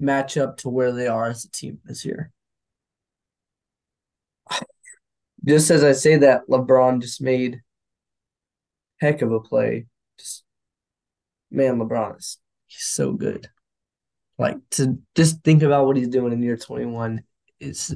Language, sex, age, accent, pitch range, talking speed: English, male, 20-39, American, 125-150 Hz, 140 wpm